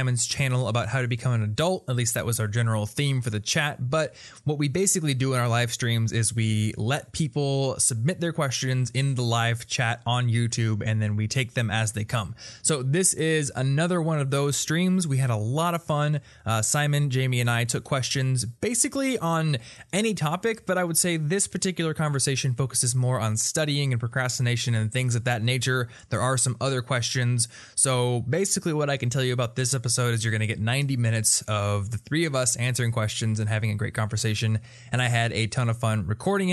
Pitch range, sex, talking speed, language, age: 115-140 Hz, male, 215 wpm, English, 20-39